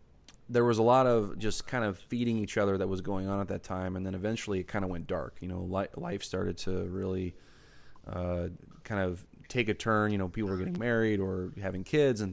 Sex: male